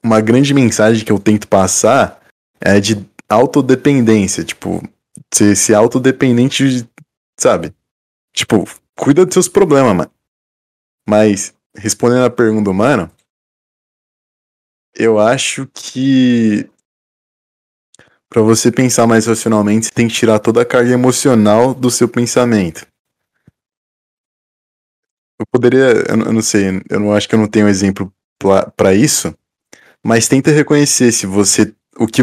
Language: Portuguese